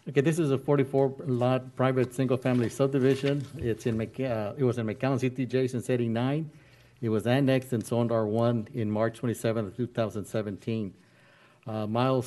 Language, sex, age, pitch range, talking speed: English, male, 60-79, 115-130 Hz, 150 wpm